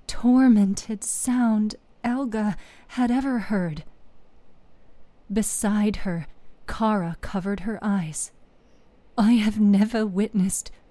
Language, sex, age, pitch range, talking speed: English, female, 40-59, 190-230 Hz, 90 wpm